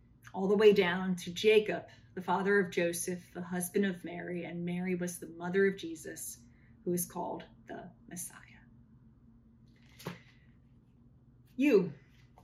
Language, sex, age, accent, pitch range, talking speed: English, female, 30-49, American, 125-200 Hz, 130 wpm